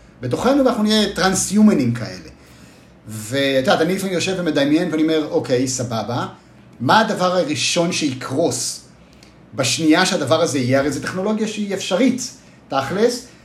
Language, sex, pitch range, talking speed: Hebrew, male, 150-215 Hz, 130 wpm